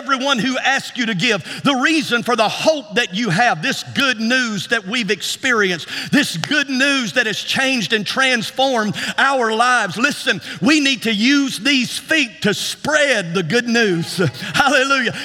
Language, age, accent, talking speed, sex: English, 50-69, American, 170 wpm, male